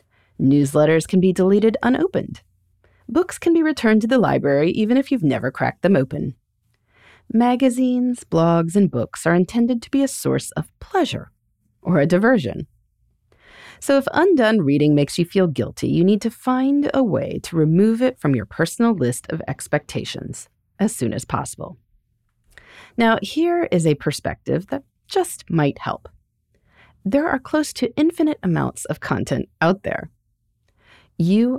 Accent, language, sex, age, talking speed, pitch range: American, English, female, 30-49, 155 wpm, 140-230 Hz